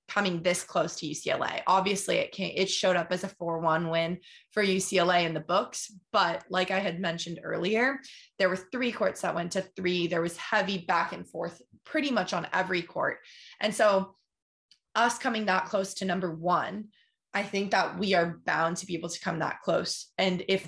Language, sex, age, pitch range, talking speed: English, female, 20-39, 175-205 Hz, 205 wpm